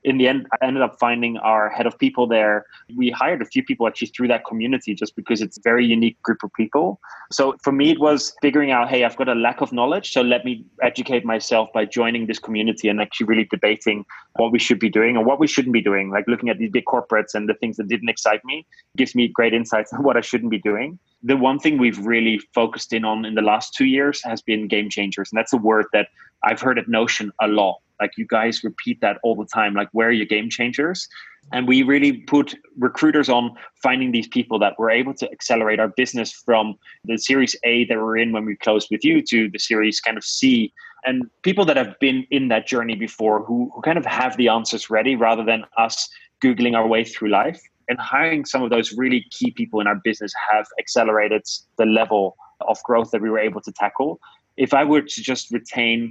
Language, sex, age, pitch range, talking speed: English, male, 20-39, 110-130 Hz, 235 wpm